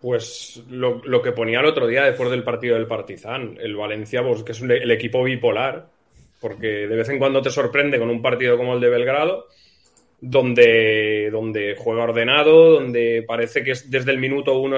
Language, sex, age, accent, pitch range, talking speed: Spanish, male, 30-49, Spanish, 120-140 Hz, 190 wpm